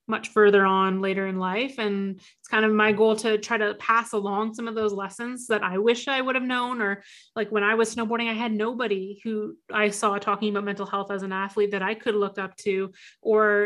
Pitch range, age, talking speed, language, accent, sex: 205-225 Hz, 30-49, 235 wpm, English, American, female